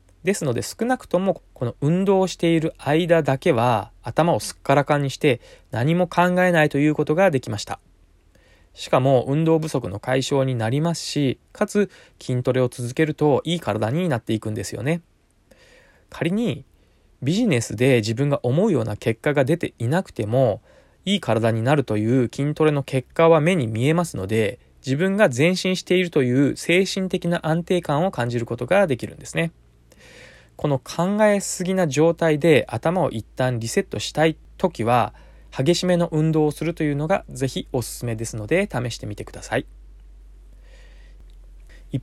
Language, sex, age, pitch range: Japanese, male, 20-39, 115-170 Hz